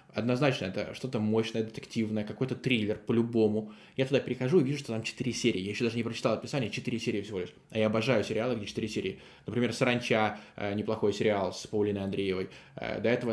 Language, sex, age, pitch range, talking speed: Russian, male, 20-39, 105-125 Hz, 200 wpm